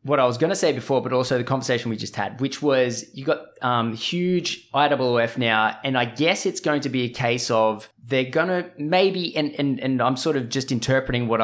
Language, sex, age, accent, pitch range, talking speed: English, male, 20-39, Australian, 120-150 Hz, 235 wpm